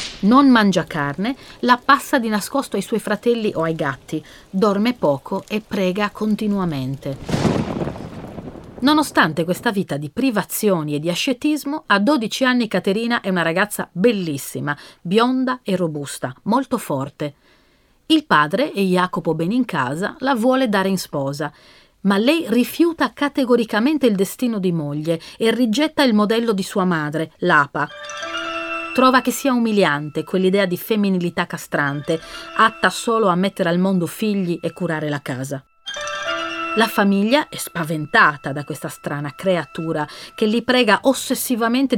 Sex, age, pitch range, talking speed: female, 40-59, 160-235 Hz, 140 wpm